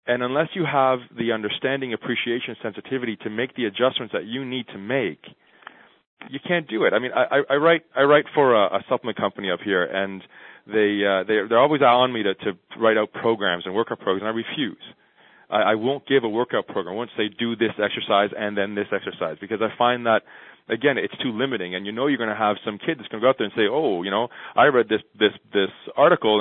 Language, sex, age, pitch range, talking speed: English, male, 30-49, 105-140 Hz, 235 wpm